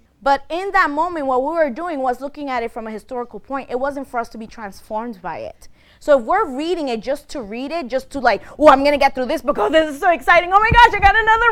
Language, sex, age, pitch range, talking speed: English, female, 20-39, 220-310 Hz, 285 wpm